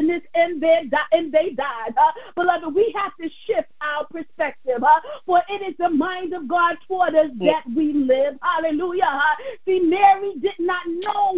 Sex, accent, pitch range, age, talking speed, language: female, American, 310-380 Hz, 40-59, 165 wpm, English